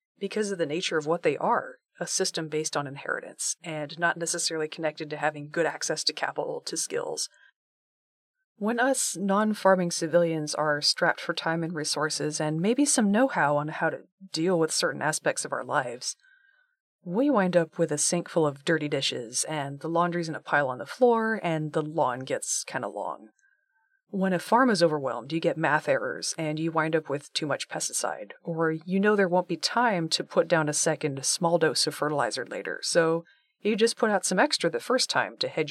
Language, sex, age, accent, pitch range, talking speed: English, female, 30-49, American, 155-240 Hz, 205 wpm